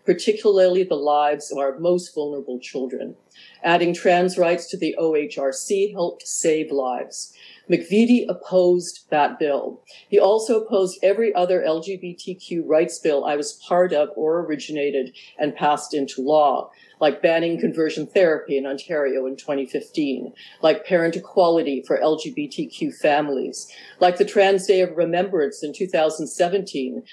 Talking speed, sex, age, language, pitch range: 135 wpm, female, 50-69, English, 150-190 Hz